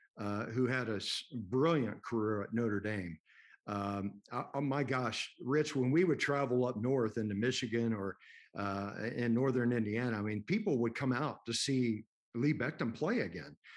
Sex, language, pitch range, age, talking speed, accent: male, English, 110-135 Hz, 50-69, 170 wpm, American